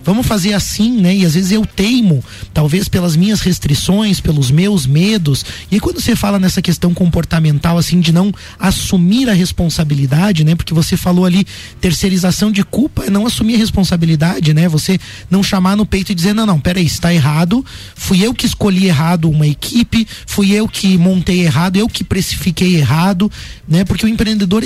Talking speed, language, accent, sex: 185 wpm, Portuguese, Brazilian, male